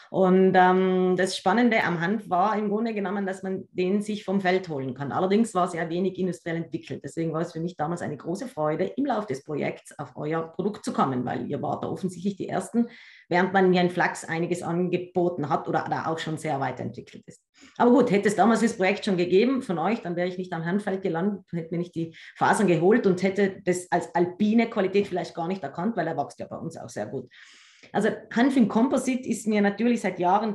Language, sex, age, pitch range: English, female, 30-49, 170-205 Hz